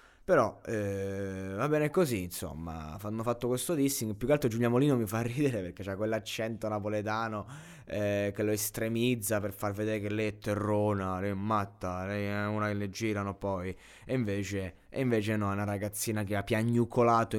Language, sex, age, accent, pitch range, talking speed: Italian, male, 20-39, native, 105-125 Hz, 185 wpm